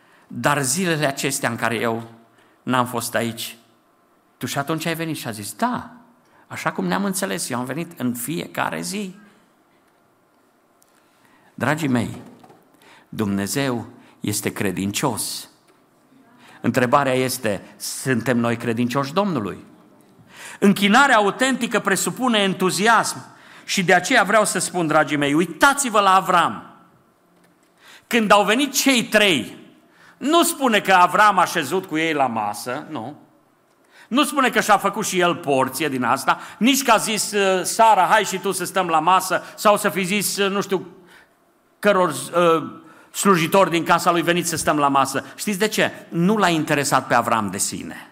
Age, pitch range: 50-69, 140-215 Hz